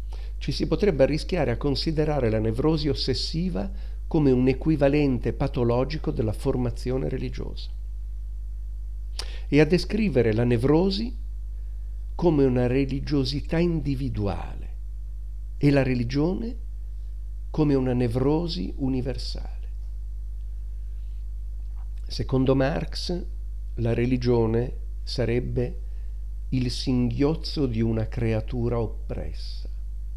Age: 50-69